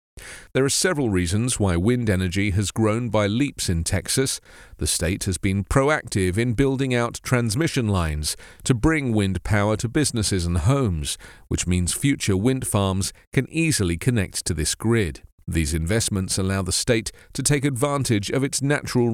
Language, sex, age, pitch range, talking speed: English, male, 40-59, 95-135 Hz, 165 wpm